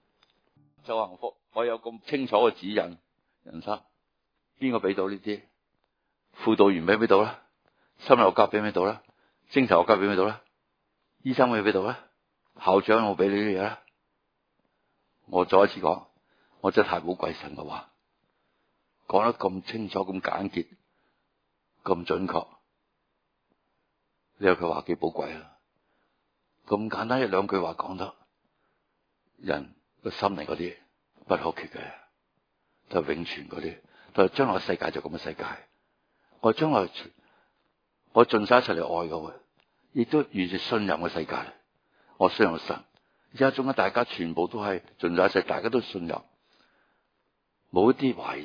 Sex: male